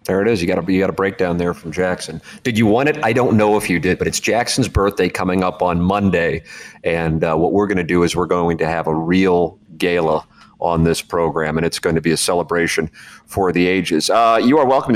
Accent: American